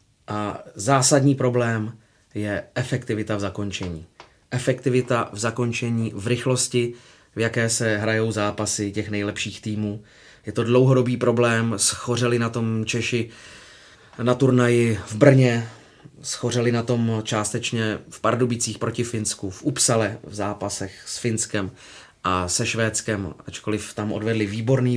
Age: 30-49